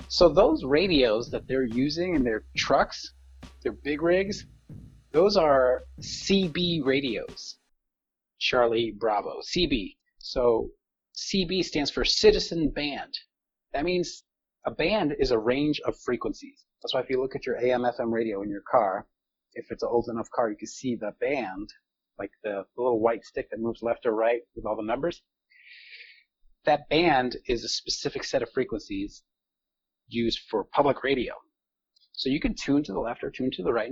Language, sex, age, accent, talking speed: English, male, 30-49, American, 170 wpm